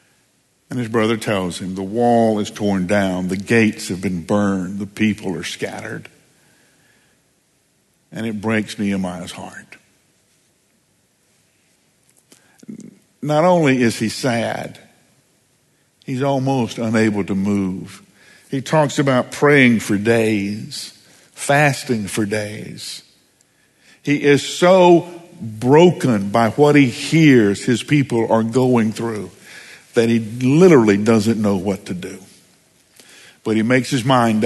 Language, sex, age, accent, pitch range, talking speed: English, male, 60-79, American, 110-150 Hz, 120 wpm